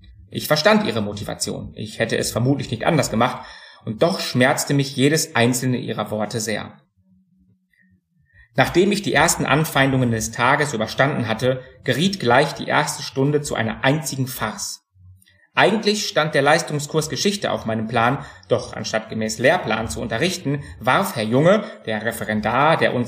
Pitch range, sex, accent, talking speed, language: 115-155 Hz, male, German, 155 wpm, German